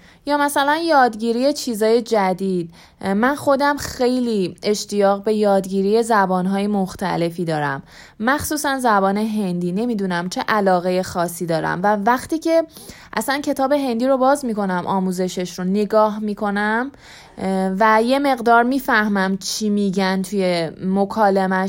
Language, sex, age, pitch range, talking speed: Persian, female, 20-39, 190-235 Hz, 120 wpm